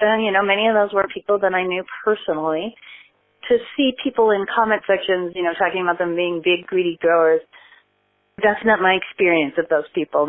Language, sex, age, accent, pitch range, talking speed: English, female, 30-49, American, 150-180 Hz, 200 wpm